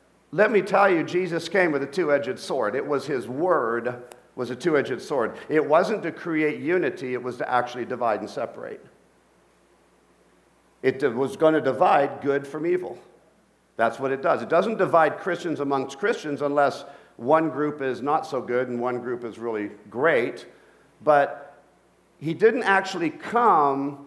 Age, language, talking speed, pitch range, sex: 50-69, English, 165 wpm, 135-170 Hz, male